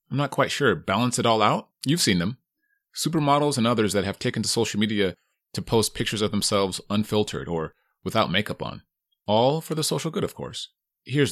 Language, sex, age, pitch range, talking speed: English, male, 30-49, 105-140 Hz, 200 wpm